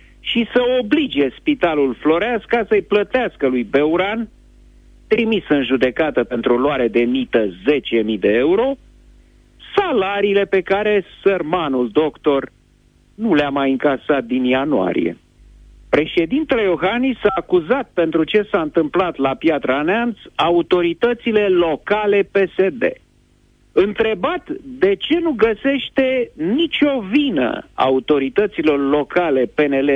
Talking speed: 110 wpm